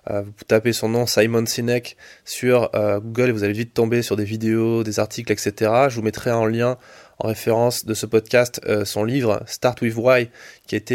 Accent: French